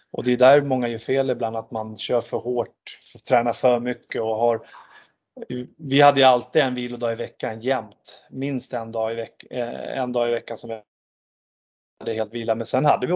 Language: Swedish